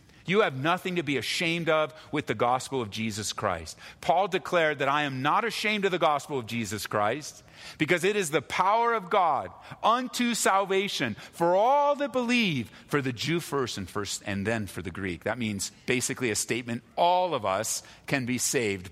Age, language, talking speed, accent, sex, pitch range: 40-59, English, 195 wpm, American, male, 105-170 Hz